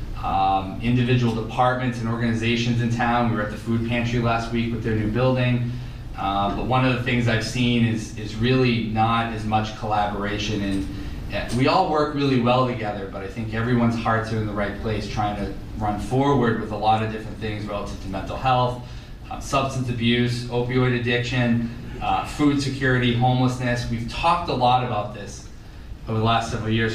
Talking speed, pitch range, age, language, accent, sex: 190 wpm, 105-125 Hz, 20-39, English, American, male